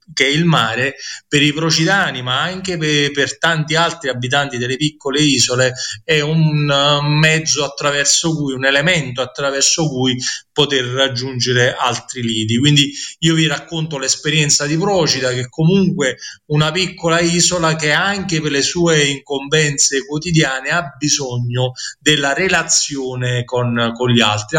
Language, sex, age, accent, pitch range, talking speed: Italian, male, 30-49, native, 135-165 Hz, 140 wpm